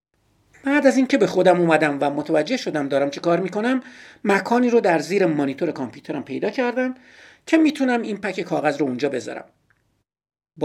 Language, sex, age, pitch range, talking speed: Persian, male, 50-69, 165-250 Hz, 170 wpm